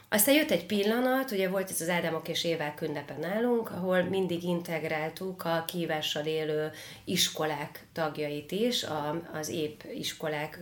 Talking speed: 140 wpm